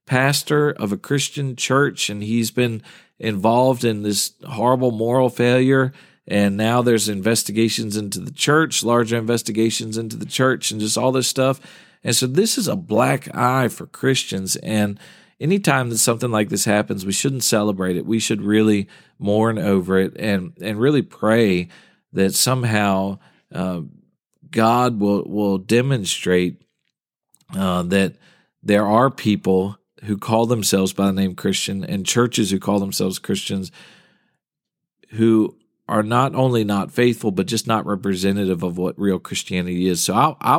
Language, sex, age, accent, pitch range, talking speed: English, male, 40-59, American, 95-125 Hz, 150 wpm